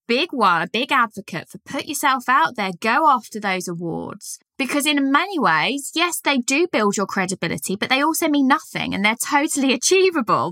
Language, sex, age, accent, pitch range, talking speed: English, female, 20-39, British, 205-255 Hz, 190 wpm